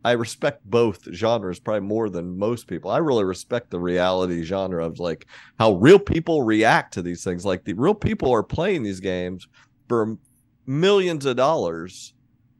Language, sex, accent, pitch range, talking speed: English, male, American, 90-125 Hz, 170 wpm